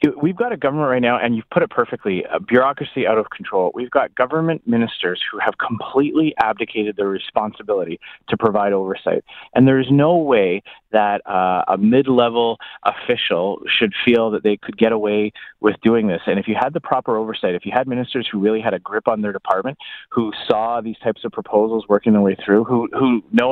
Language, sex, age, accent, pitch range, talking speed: English, male, 30-49, American, 105-125 Hz, 205 wpm